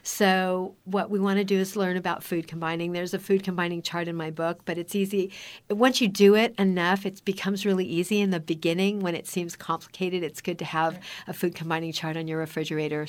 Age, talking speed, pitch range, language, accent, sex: 60-79, 225 wpm, 160-195 Hz, English, American, female